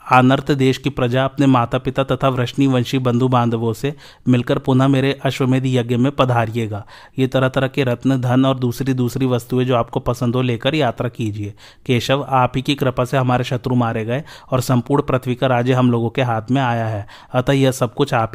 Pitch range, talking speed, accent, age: 125-135 Hz, 210 wpm, native, 30-49